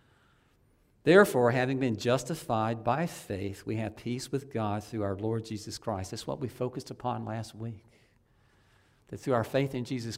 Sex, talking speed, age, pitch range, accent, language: male, 170 wpm, 50-69, 105-125 Hz, American, English